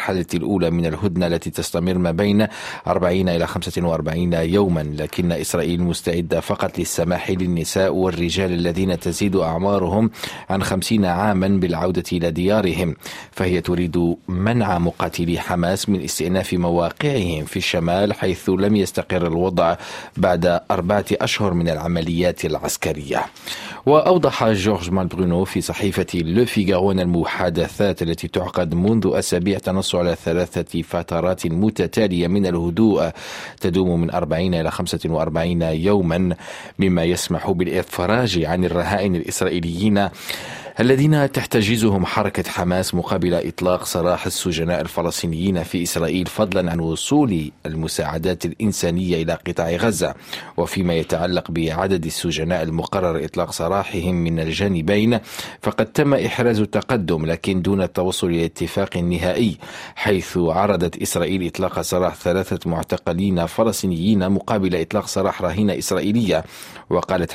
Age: 40-59